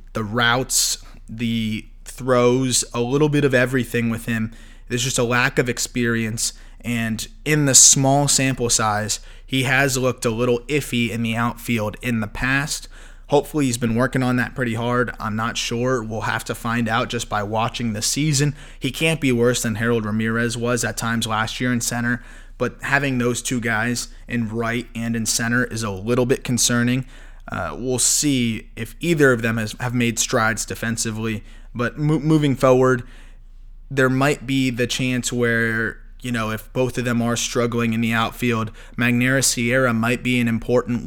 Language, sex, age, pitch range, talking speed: English, male, 20-39, 115-125 Hz, 180 wpm